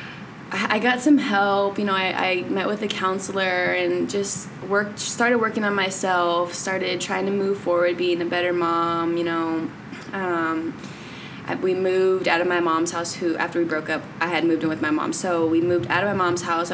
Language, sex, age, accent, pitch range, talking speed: English, female, 20-39, American, 170-195 Hz, 210 wpm